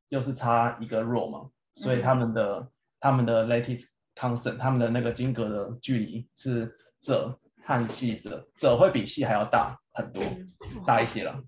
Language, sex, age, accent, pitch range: Chinese, male, 20-39, native, 115-130 Hz